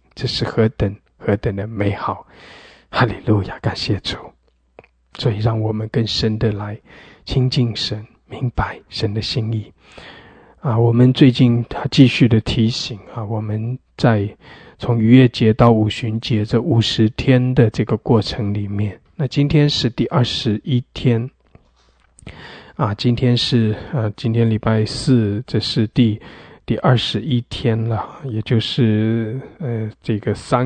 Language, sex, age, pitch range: English, male, 20-39, 105-125 Hz